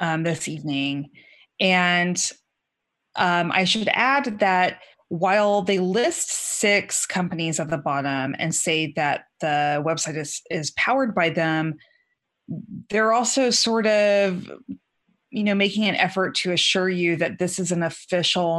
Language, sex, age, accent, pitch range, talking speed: English, female, 30-49, American, 165-210 Hz, 140 wpm